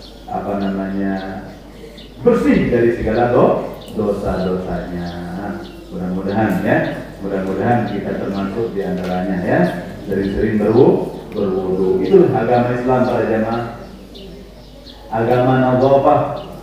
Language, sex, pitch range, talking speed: Indonesian, male, 105-145 Hz, 85 wpm